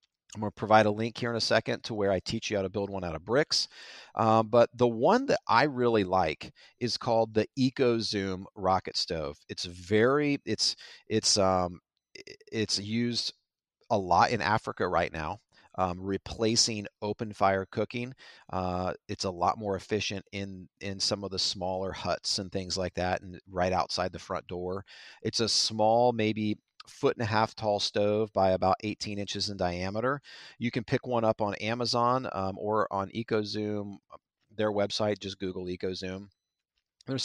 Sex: male